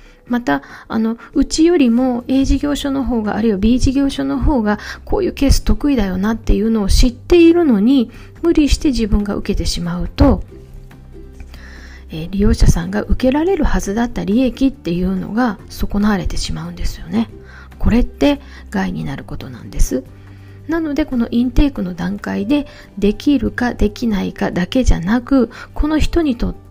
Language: Japanese